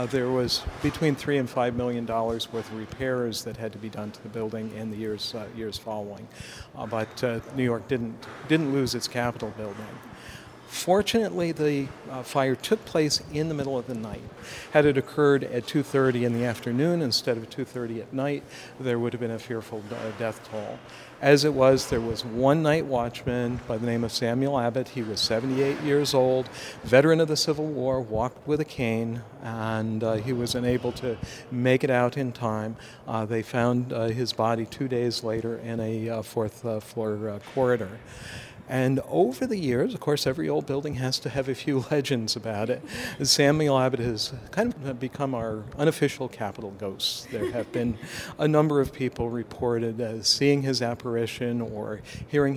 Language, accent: English, American